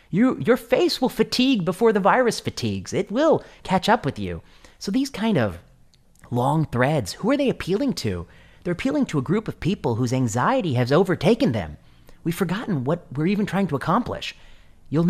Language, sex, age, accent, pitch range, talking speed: English, male, 30-49, American, 110-185 Hz, 185 wpm